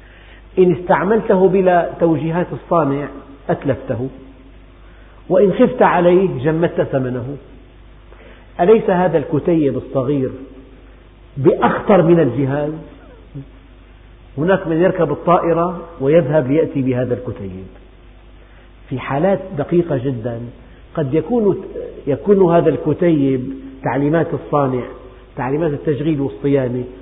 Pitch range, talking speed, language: 125-175 Hz, 90 wpm, Arabic